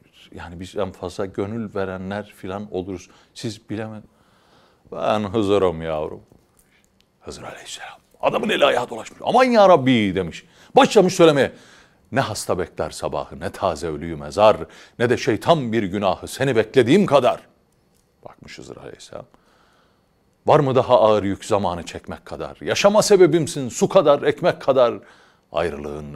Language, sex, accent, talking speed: Turkish, male, native, 135 wpm